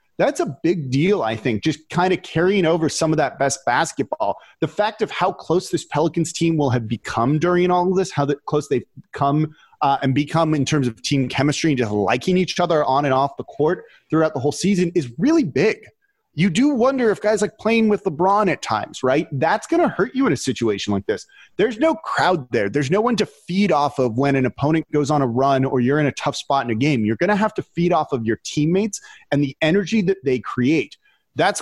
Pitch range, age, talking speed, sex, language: 135-190 Hz, 30-49, 240 wpm, male, English